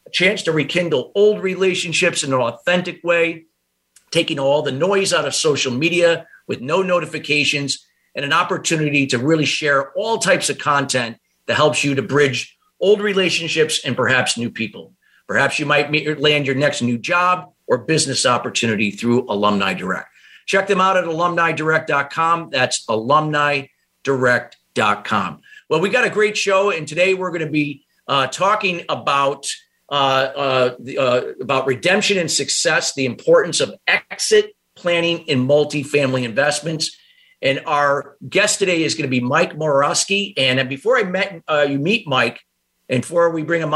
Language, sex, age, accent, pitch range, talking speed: English, male, 50-69, American, 140-175 Hz, 160 wpm